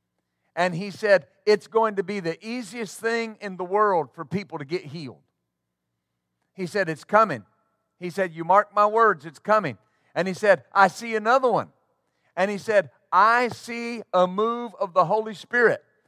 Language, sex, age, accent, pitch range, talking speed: English, male, 50-69, American, 170-220 Hz, 180 wpm